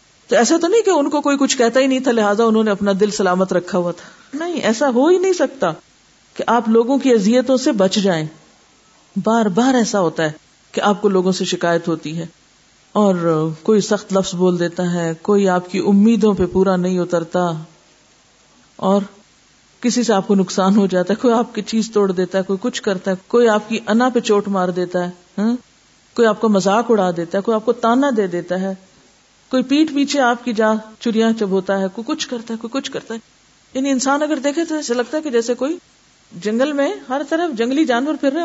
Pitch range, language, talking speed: 190-260 Hz, Urdu, 225 wpm